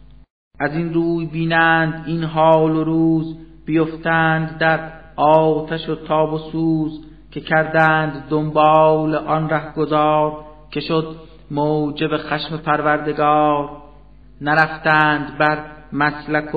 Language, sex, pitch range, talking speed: Persian, male, 145-155 Hz, 100 wpm